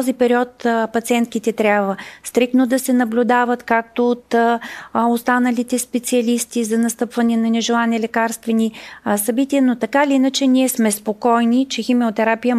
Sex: female